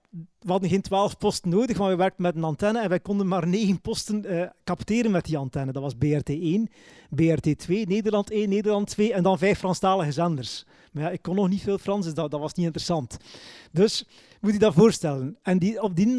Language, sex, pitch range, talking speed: Dutch, male, 170-220 Hz, 225 wpm